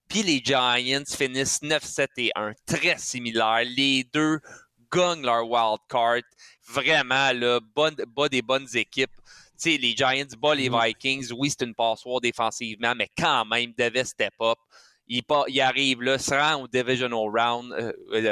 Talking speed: 160 wpm